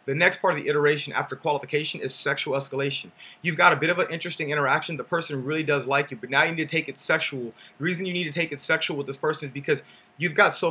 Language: English